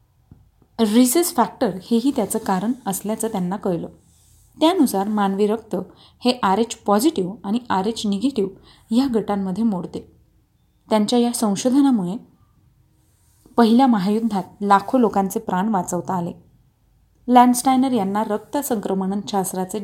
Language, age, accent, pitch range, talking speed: Marathi, 30-49, native, 195-235 Hz, 110 wpm